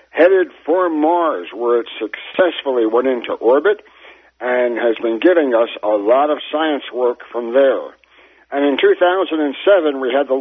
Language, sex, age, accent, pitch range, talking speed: English, male, 60-79, American, 125-165 Hz, 155 wpm